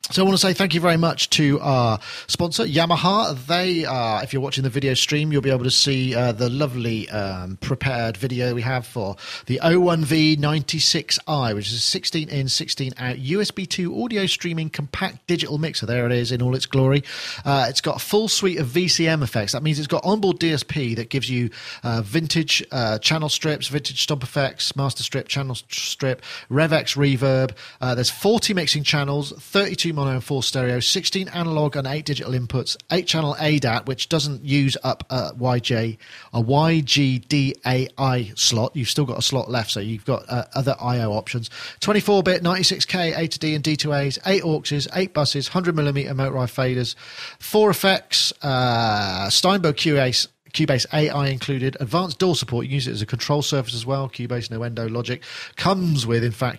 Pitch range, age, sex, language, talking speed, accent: 125-160 Hz, 40-59, male, English, 190 wpm, British